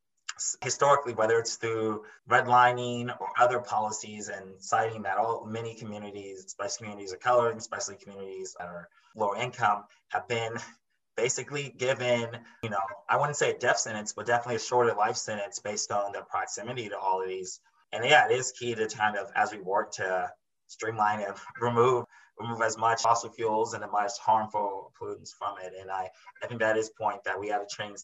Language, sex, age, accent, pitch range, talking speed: English, male, 20-39, American, 105-125 Hz, 195 wpm